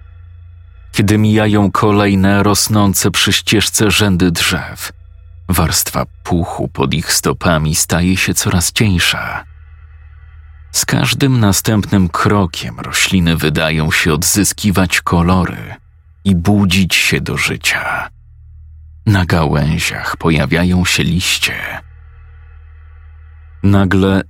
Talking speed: 90 wpm